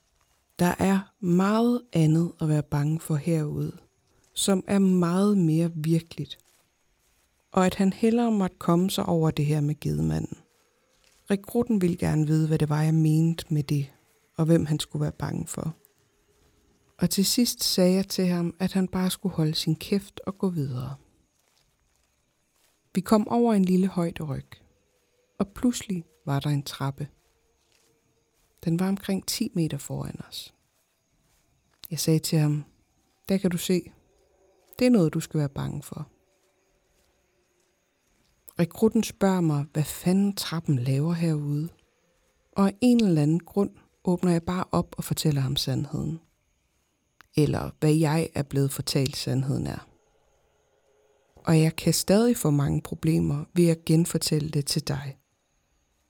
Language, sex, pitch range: Danish, female, 150-190 Hz